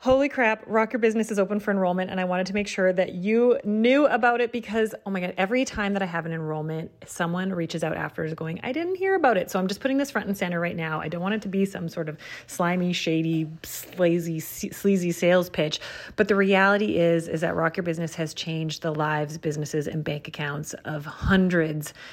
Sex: female